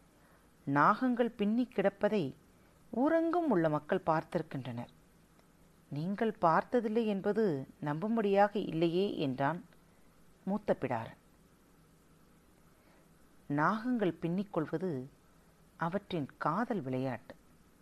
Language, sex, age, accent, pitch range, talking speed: Tamil, female, 40-59, native, 145-220 Hz, 65 wpm